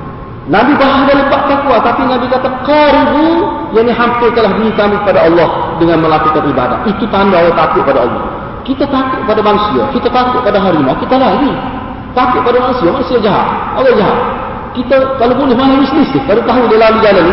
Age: 40-59